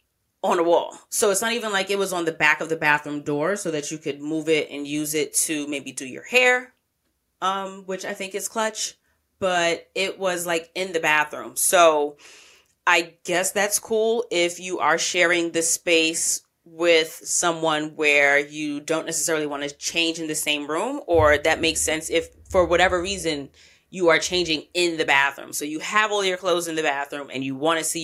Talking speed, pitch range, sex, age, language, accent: 205 wpm, 150-185 Hz, female, 30-49, English, American